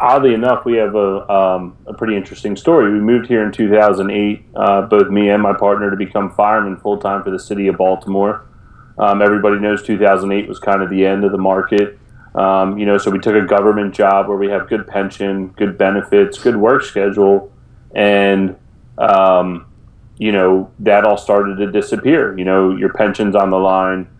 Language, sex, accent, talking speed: English, male, American, 205 wpm